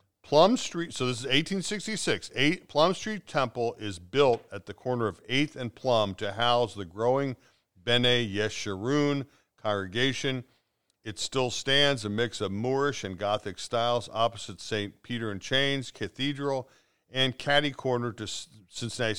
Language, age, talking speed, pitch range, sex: English, 50-69, 145 wpm, 105-135 Hz, male